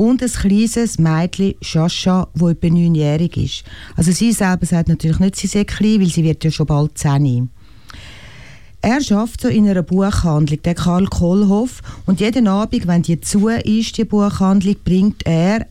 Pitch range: 150-205 Hz